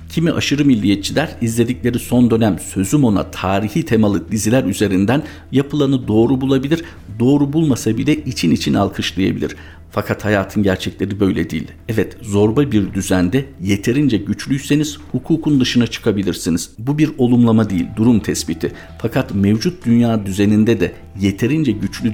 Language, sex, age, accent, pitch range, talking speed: Turkish, male, 50-69, native, 100-130 Hz, 130 wpm